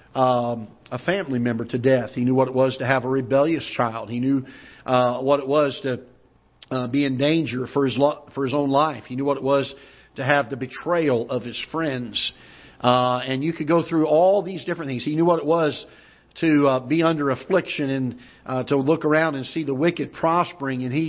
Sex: male